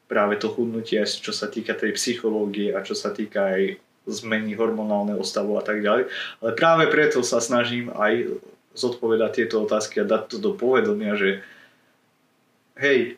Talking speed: 160 wpm